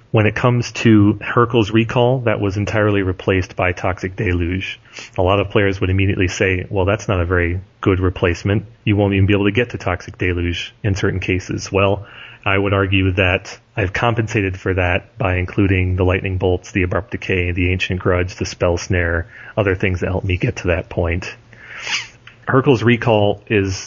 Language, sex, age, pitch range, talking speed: English, male, 30-49, 95-110 Hz, 190 wpm